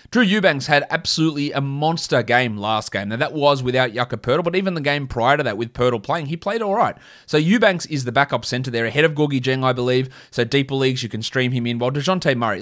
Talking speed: 250 wpm